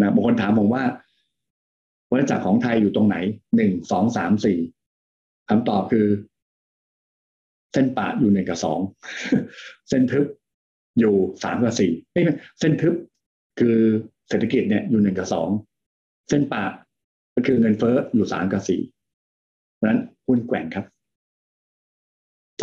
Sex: male